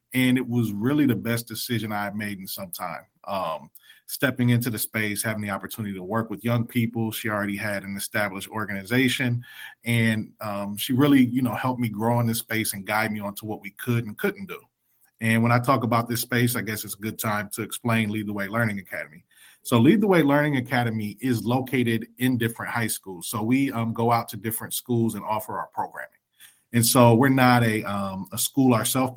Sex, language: male, English